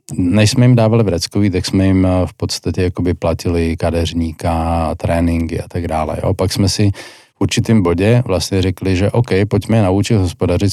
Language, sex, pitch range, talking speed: Slovak, male, 90-110 Hz, 180 wpm